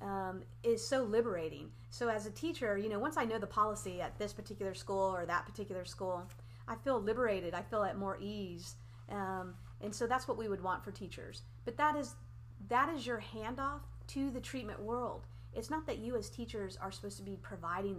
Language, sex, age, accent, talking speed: English, female, 30-49, American, 210 wpm